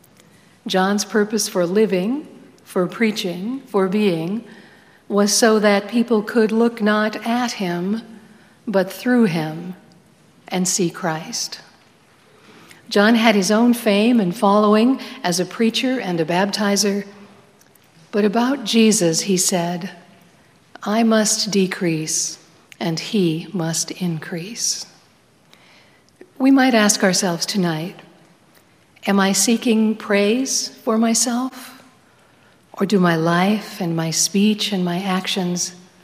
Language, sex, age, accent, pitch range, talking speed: English, female, 60-79, American, 180-220 Hz, 115 wpm